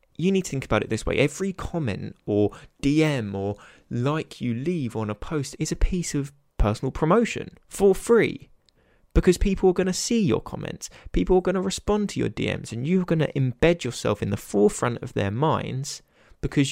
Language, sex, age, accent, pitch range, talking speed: English, male, 20-39, British, 110-150 Hz, 200 wpm